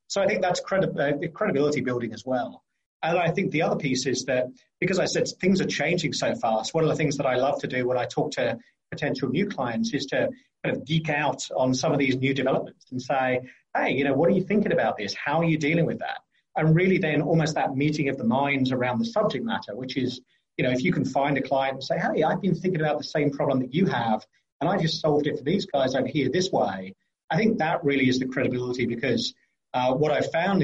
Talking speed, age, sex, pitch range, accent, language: 255 wpm, 30-49, male, 130-165 Hz, British, English